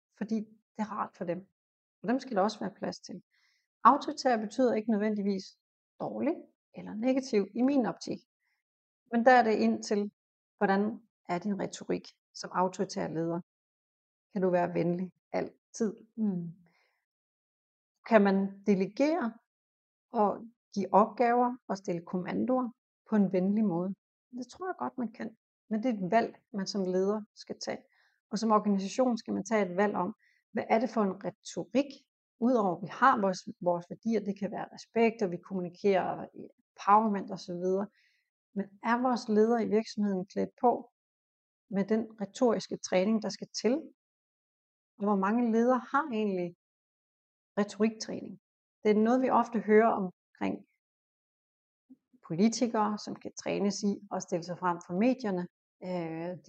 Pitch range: 190-235 Hz